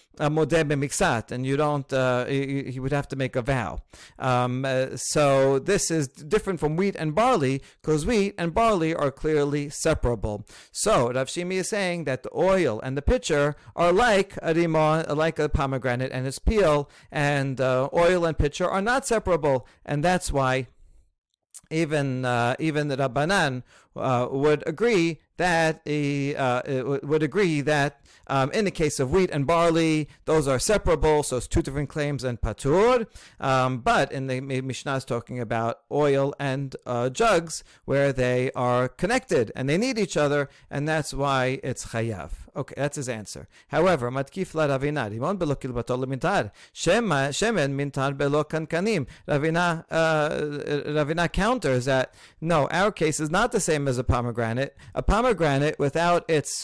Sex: male